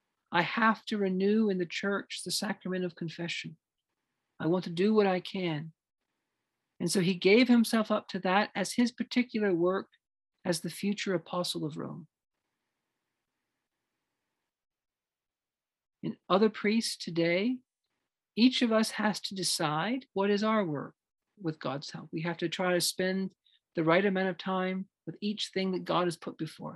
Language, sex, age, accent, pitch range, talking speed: English, male, 50-69, American, 170-205 Hz, 160 wpm